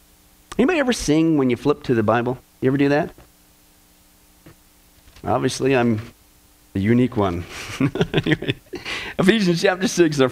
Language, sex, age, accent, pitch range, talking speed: English, male, 40-59, American, 110-160 Hz, 140 wpm